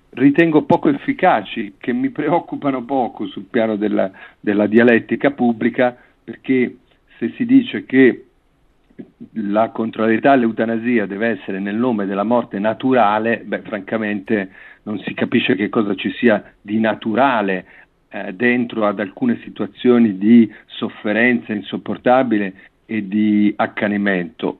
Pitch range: 110-140 Hz